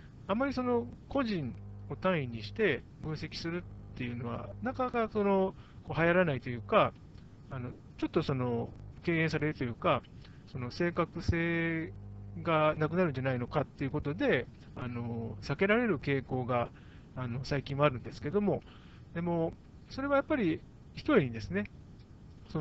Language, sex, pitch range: Japanese, male, 120-185 Hz